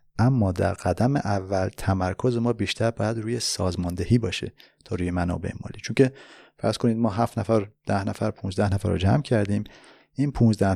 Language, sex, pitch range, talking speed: Persian, male, 95-120 Hz, 175 wpm